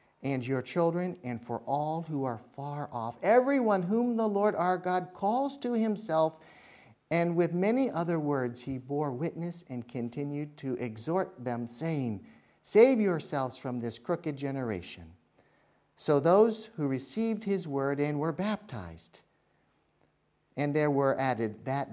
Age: 50-69